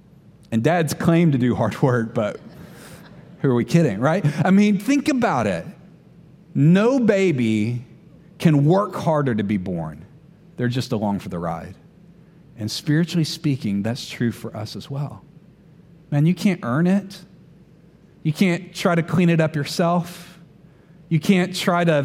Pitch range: 135-180 Hz